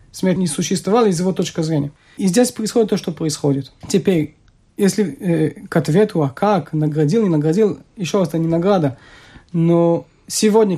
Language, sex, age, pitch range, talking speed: Russian, male, 30-49, 170-225 Hz, 165 wpm